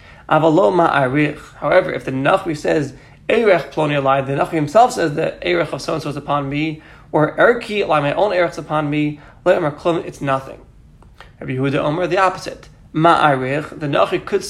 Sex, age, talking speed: male, 20-39, 160 wpm